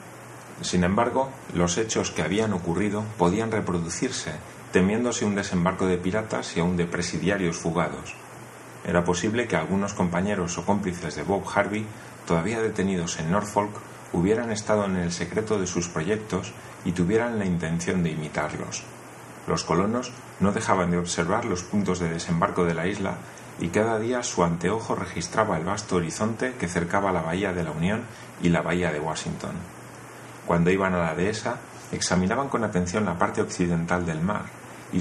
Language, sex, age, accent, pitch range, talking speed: Spanish, male, 40-59, Spanish, 85-105 Hz, 165 wpm